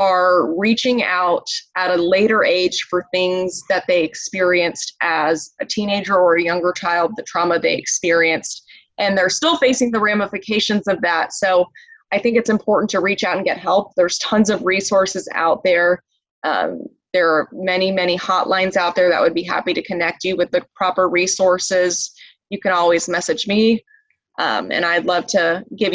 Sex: female